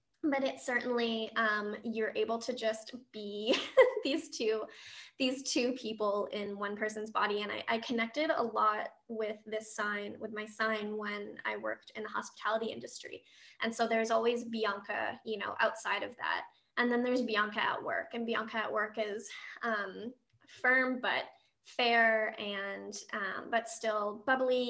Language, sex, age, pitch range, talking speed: English, female, 20-39, 215-250 Hz, 165 wpm